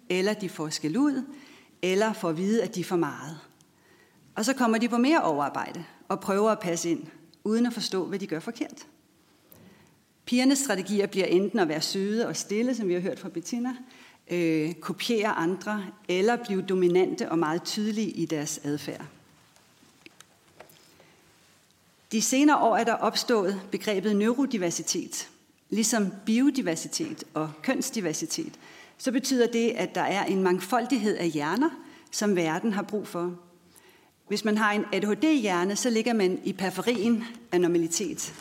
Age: 40-59